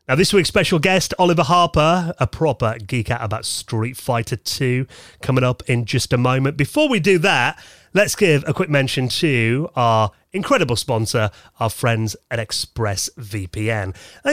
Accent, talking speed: British, 165 wpm